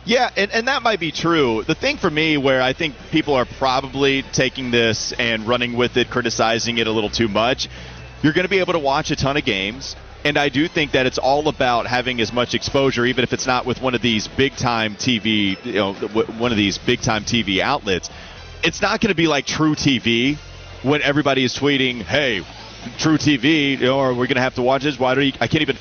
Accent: American